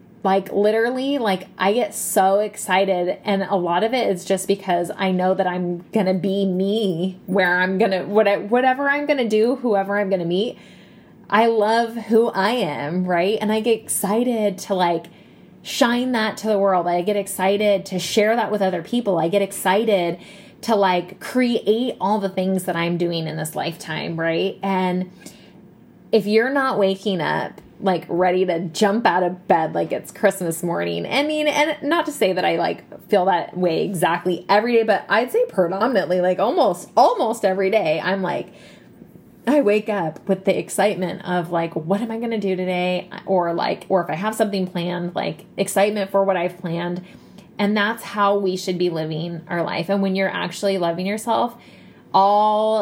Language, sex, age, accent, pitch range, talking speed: English, female, 20-39, American, 180-215 Hz, 185 wpm